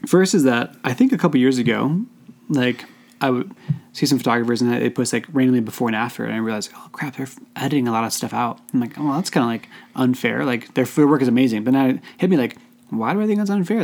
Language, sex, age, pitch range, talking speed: English, male, 20-39, 120-155 Hz, 265 wpm